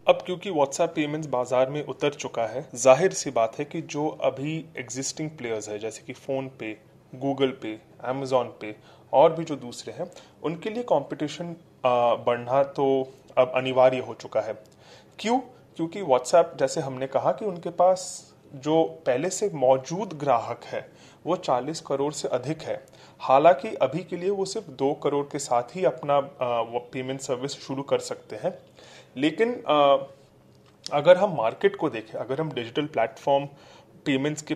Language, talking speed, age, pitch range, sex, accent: Hindi, 165 wpm, 30-49, 135-175 Hz, male, native